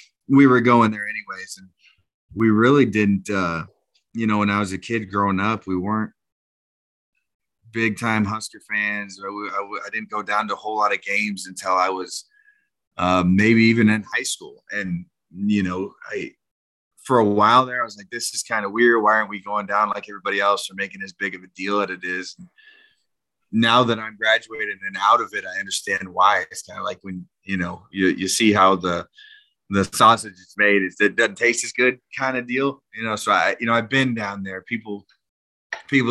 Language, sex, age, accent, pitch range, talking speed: English, male, 30-49, American, 95-115 Hz, 215 wpm